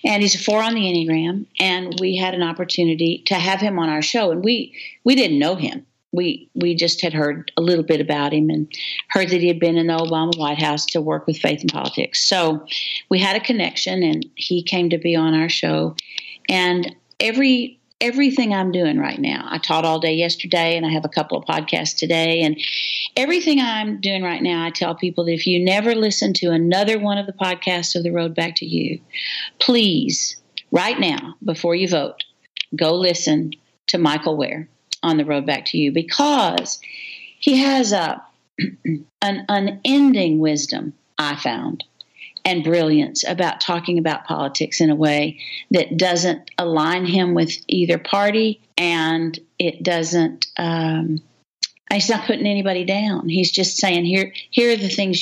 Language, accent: English, American